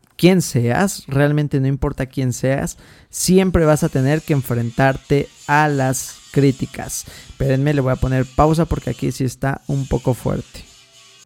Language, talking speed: Spanish, 155 wpm